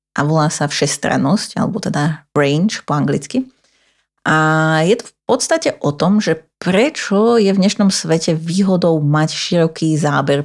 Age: 30-49